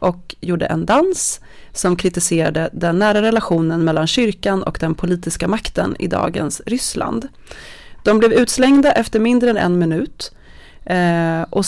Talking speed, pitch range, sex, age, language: 140 wpm, 165-215 Hz, female, 30-49, Swedish